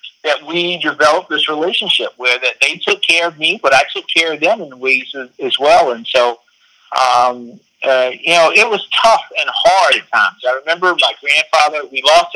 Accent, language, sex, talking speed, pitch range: American, English, male, 210 wpm, 130-165 Hz